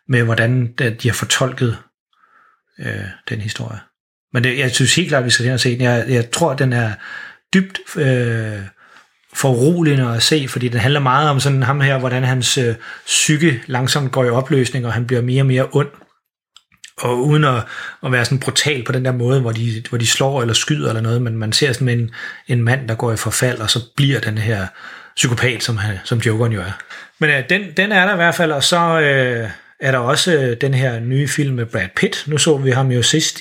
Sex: male